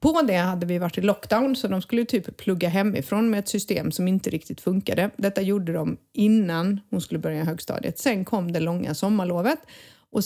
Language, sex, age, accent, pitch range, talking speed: Swedish, female, 30-49, native, 180-230 Hz, 200 wpm